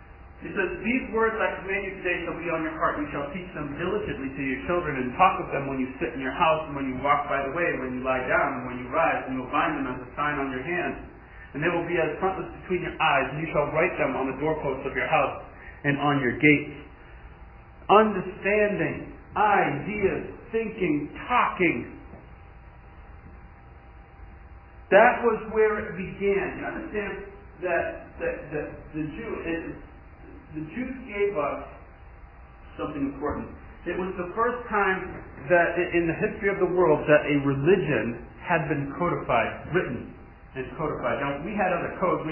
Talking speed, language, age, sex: 190 wpm, English, 40-59, male